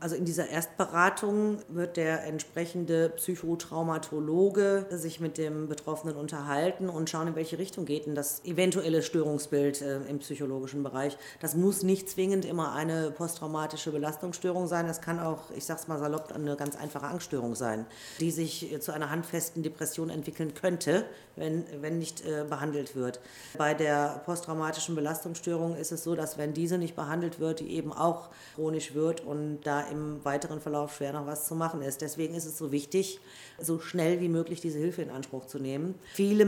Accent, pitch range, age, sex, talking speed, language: German, 150-170 Hz, 40-59, female, 175 wpm, German